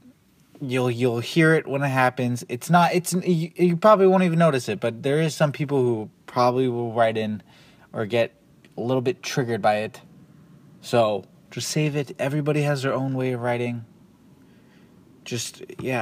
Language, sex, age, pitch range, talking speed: English, male, 20-39, 120-155 Hz, 175 wpm